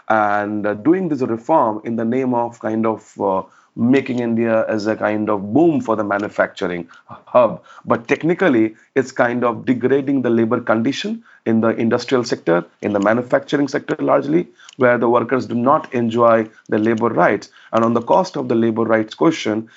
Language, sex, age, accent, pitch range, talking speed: English, male, 40-59, Indian, 110-140 Hz, 175 wpm